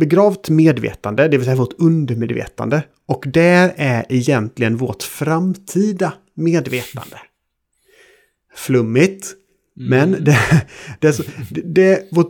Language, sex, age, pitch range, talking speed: Swedish, male, 30-49, 120-160 Hz, 85 wpm